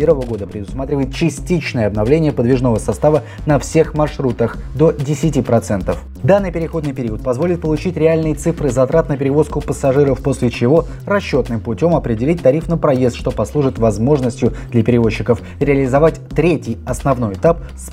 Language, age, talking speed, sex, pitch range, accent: Russian, 20-39, 135 wpm, male, 115-150 Hz, native